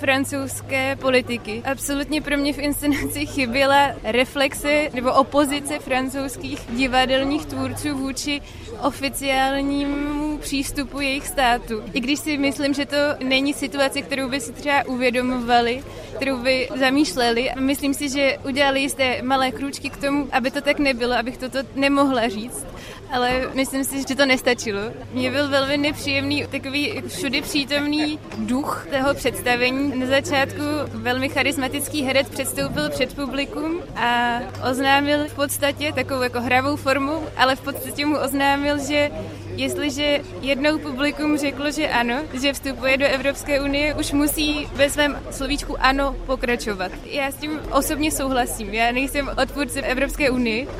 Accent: native